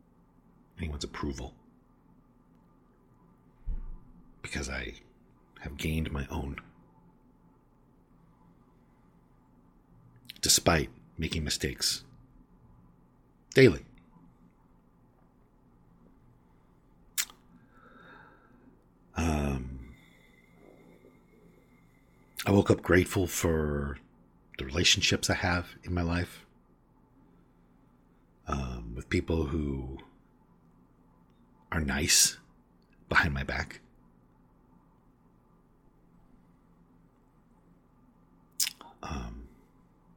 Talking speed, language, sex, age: 50 wpm, English, male, 50-69